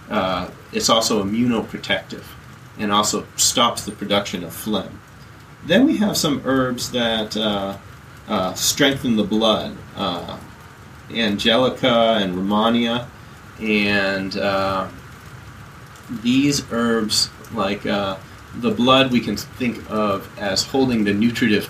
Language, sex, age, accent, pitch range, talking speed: English, male, 30-49, American, 100-125 Hz, 115 wpm